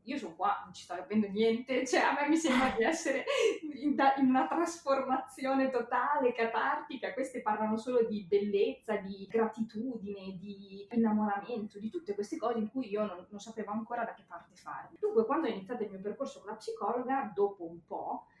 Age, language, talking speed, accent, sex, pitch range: 20-39, Italian, 190 wpm, native, female, 190-245 Hz